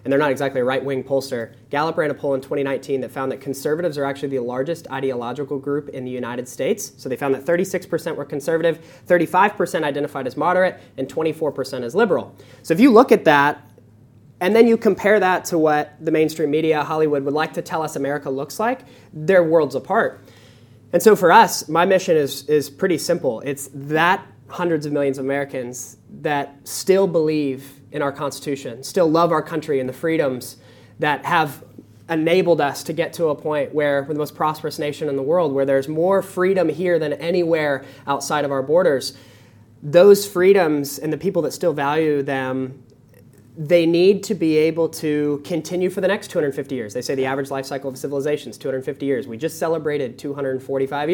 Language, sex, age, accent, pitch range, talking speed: English, male, 20-39, American, 135-170 Hz, 195 wpm